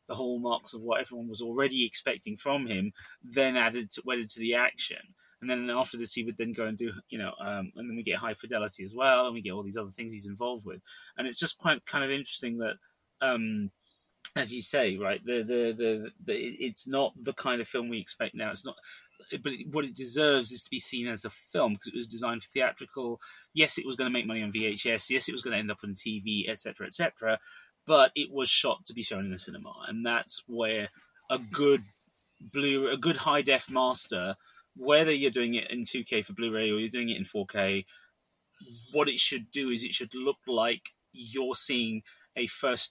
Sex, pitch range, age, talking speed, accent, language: male, 110-135 Hz, 20-39, 245 wpm, British, English